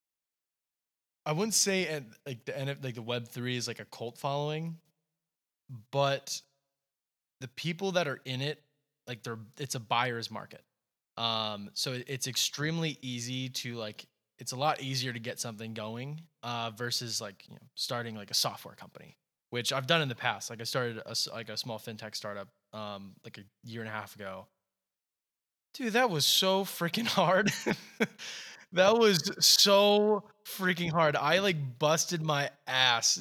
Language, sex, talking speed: English, male, 170 wpm